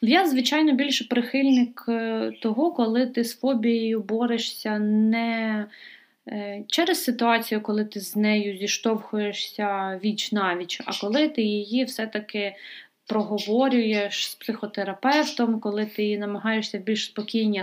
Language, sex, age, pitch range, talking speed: Ukrainian, female, 20-39, 200-245 Hz, 120 wpm